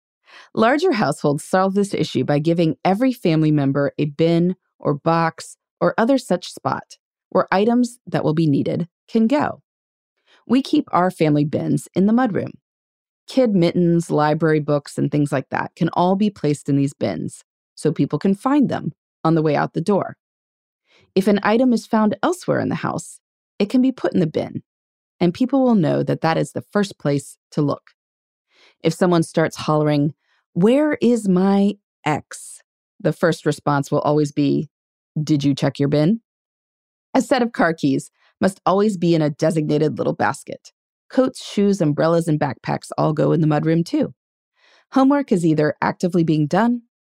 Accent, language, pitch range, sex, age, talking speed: American, English, 150-210 Hz, female, 30-49, 175 wpm